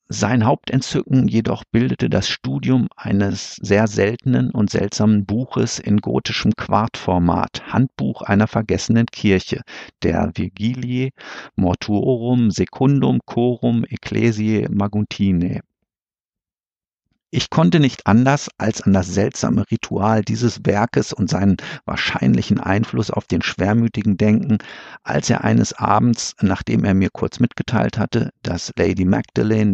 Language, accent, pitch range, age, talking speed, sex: German, German, 100-115 Hz, 50-69, 115 wpm, male